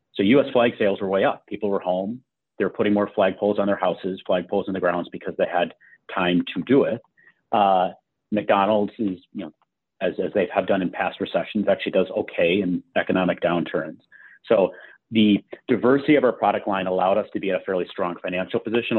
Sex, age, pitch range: male, 40-59, 95-115 Hz